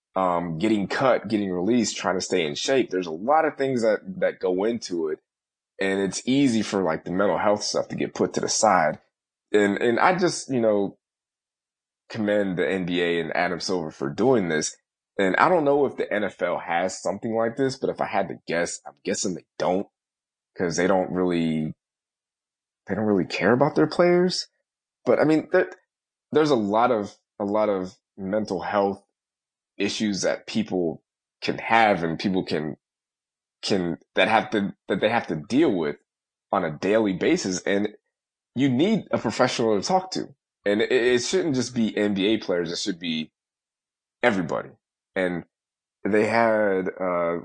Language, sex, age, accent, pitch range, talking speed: English, male, 20-39, American, 90-115 Hz, 180 wpm